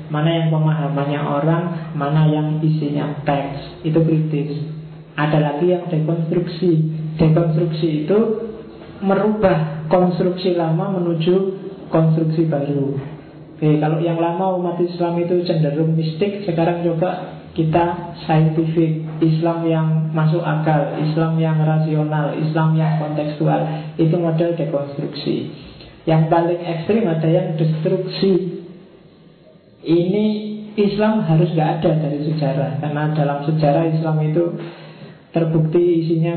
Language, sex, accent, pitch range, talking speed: Indonesian, male, native, 155-175 Hz, 110 wpm